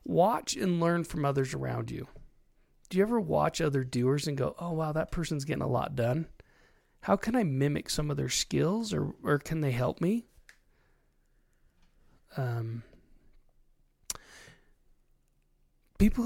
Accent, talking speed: American, 145 wpm